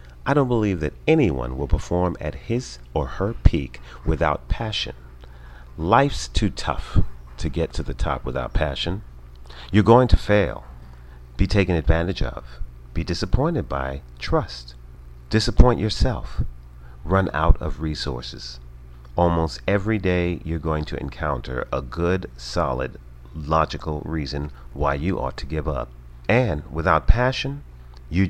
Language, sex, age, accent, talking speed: English, male, 40-59, American, 135 wpm